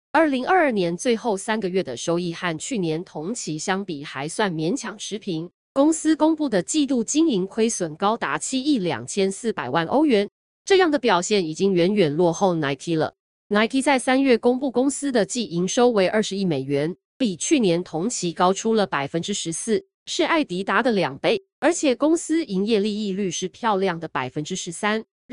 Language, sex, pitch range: Chinese, female, 175-250 Hz